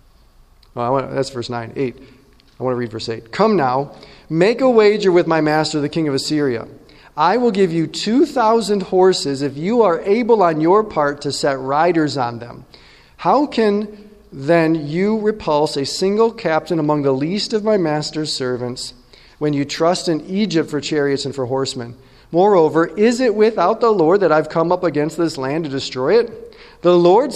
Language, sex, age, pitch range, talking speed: English, male, 40-59, 140-205 Hz, 180 wpm